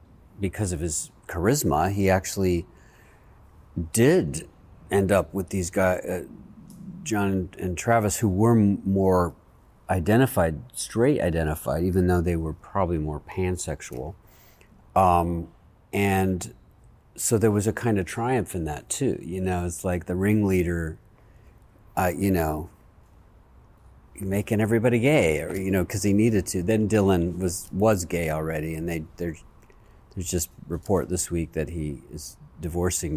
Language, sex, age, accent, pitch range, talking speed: English, male, 50-69, American, 85-100 Hz, 140 wpm